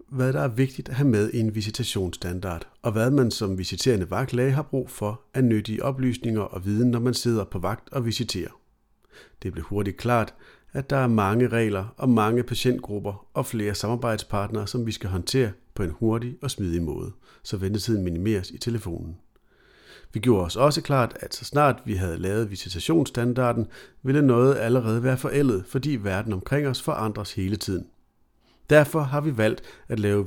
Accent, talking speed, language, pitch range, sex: native, 180 wpm, Danish, 100-130 Hz, male